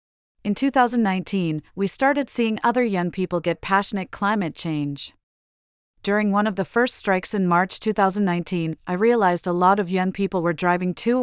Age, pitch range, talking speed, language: 40-59, 165-205 Hz, 165 wpm, English